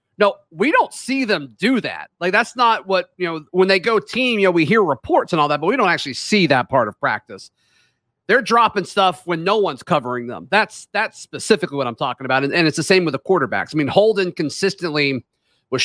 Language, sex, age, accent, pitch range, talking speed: English, male, 40-59, American, 145-190 Hz, 235 wpm